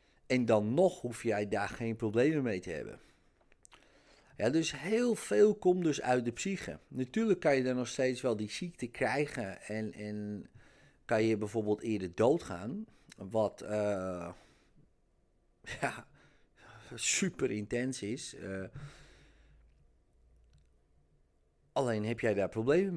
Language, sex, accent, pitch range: Dutch, male, Dutch, 100-130 Hz